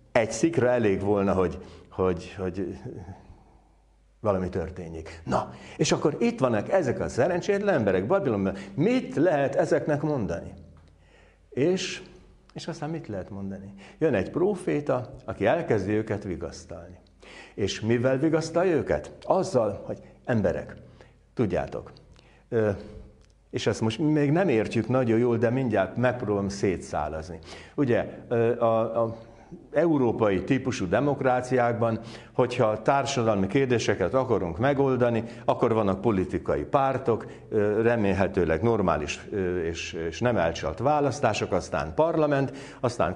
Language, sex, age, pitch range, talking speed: Hungarian, male, 60-79, 95-140 Hz, 115 wpm